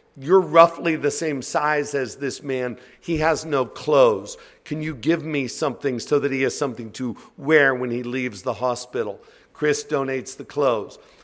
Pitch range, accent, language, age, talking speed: 140-185 Hz, American, English, 50-69, 175 wpm